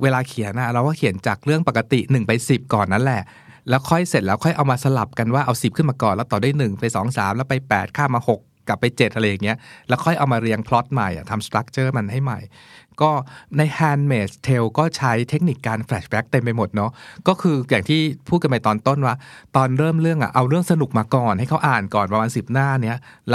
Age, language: 60-79, Thai